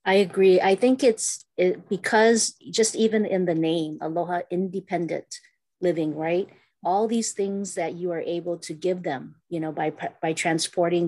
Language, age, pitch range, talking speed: English, 40-59, 170-200 Hz, 170 wpm